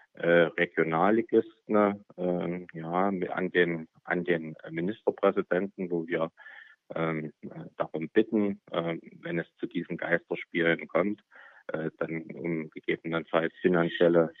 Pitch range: 85-95 Hz